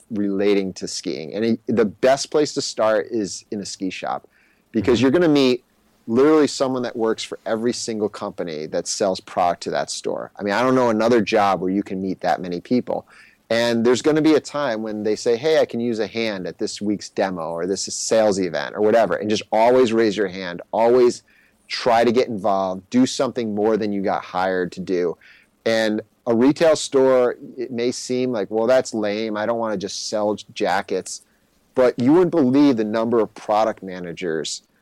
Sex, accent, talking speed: male, American, 205 wpm